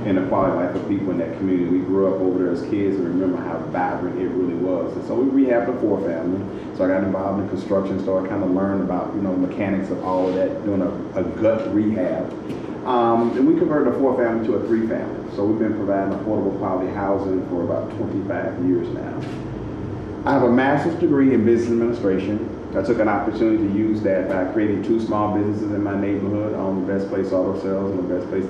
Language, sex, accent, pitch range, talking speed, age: English, male, American, 95-110 Hz, 225 wpm, 30-49